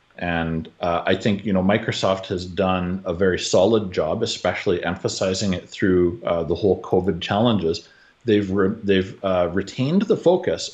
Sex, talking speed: male, 160 wpm